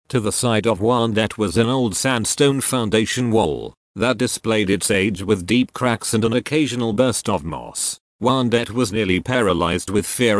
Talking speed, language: 175 wpm, English